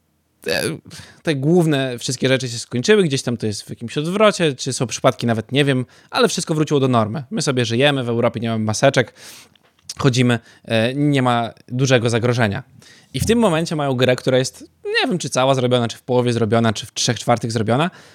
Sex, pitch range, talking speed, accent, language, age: male, 120-155 Hz, 200 wpm, native, Polish, 20-39